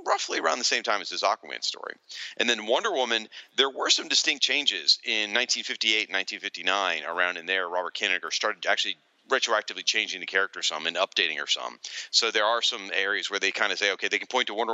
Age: 40-59